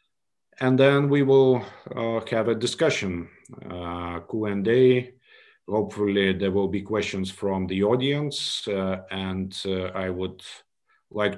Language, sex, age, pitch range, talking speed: English, male, 50-69, 95-120 Hz, 125 wpm